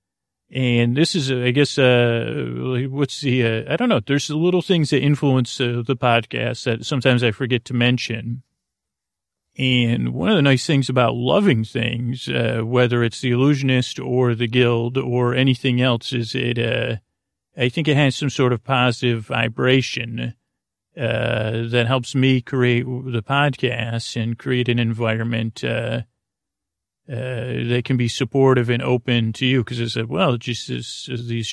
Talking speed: 165 wpm